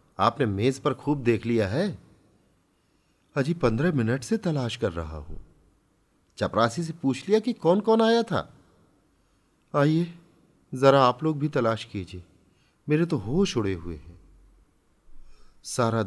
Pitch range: 85-125 Hz